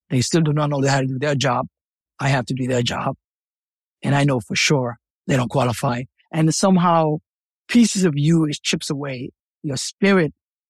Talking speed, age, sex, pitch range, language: 190 wpm, 50-69, male, 140-170 Hz, English